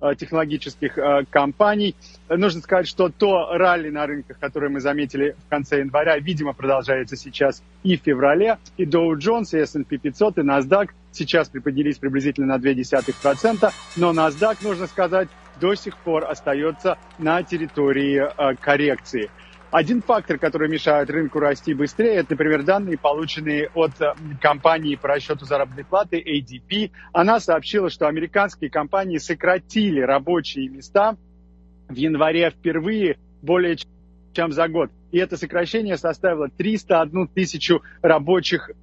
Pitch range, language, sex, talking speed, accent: 145-180 Hz, Russian, male, 130 wpm, native